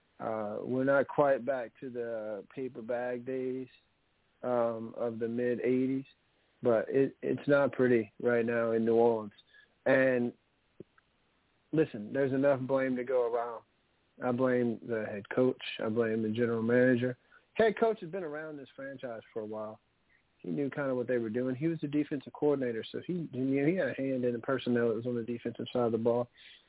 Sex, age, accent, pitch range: male, 40-59, American, 115-135 Hz